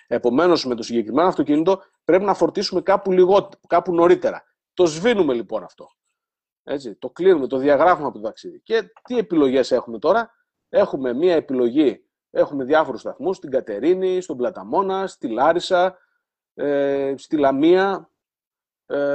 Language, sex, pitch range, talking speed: Greek, male, 145-210 Hz, 140 wpm